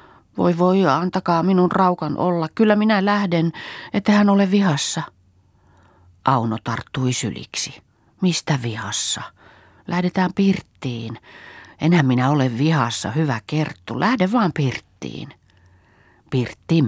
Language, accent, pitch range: Finnish, native, 125-160 Hz